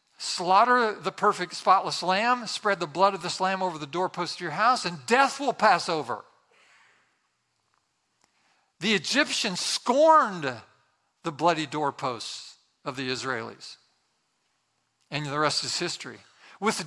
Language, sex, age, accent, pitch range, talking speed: English, male, 50-69, American, 175-245 Hz, 130 wpm